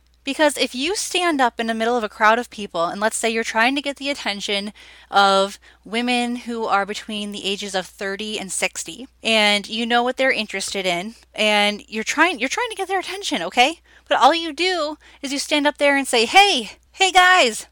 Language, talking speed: English, 215 wpm